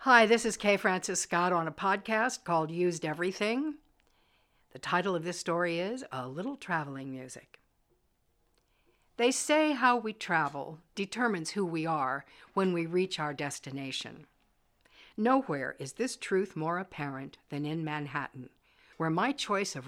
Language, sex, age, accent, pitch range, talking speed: English, female, 60-79, American, 145-200 Hz, 150 wpm